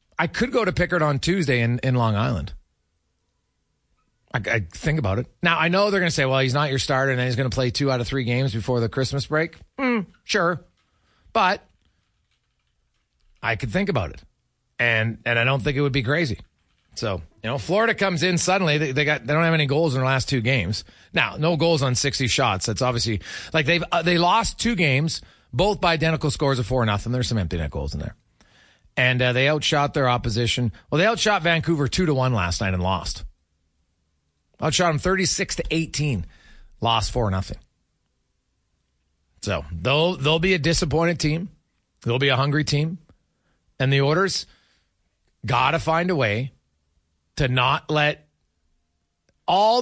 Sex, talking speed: male, 190 wpm